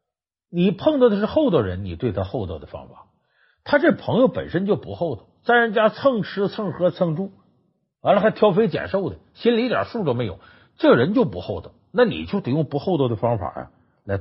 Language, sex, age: Chinese, male, 50-69